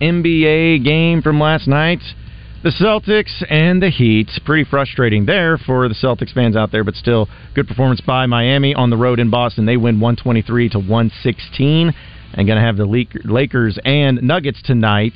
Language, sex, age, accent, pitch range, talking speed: English, male, 40-59, American, 110-145 Hz, 170 wpm